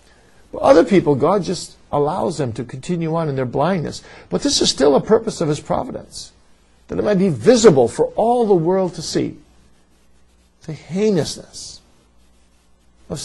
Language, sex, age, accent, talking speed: English, male, 50-69, American, 160 wpm